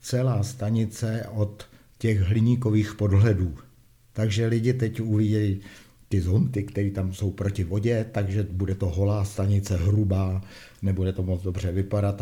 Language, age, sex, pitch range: Czech, 50-69, male, 95-110 Hz